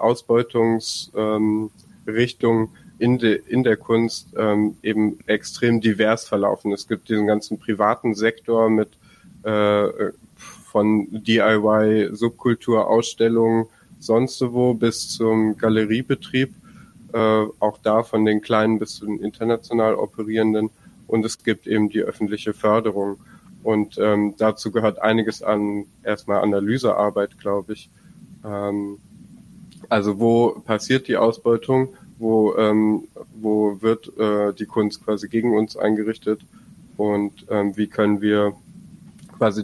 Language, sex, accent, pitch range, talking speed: German, male, German, 105-115 Hz, 120 wpm